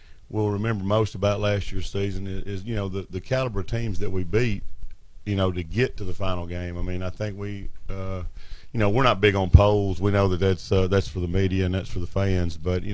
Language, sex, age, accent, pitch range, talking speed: English, male, 50-69, American, 90-100 Hz, 255 wpm